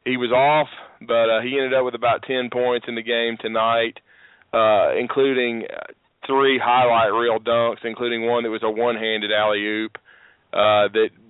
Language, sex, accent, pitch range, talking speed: English, male, American, 115-125 Hz, 160 wpm